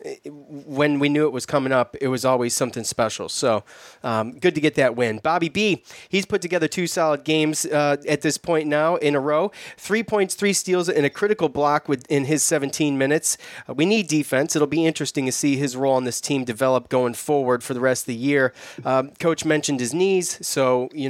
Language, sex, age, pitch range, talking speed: English, male, 30-49, 135-165 Hz, 220 wpm